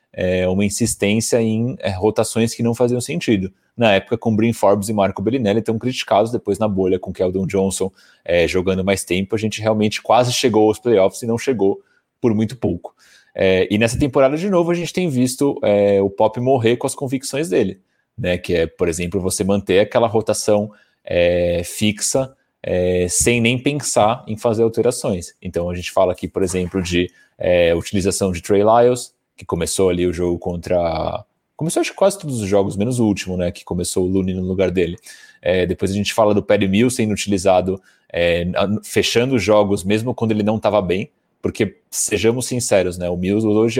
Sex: male